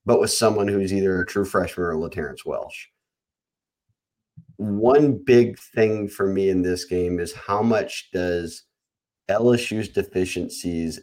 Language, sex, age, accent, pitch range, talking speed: English, male, 30-49, American, 85-100 Hz, 135 wpm